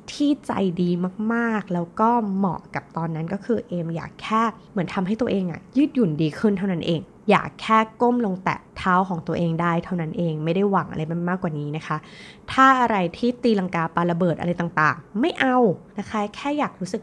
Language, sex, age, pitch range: Thai, female, 20-39, 165-220 Hz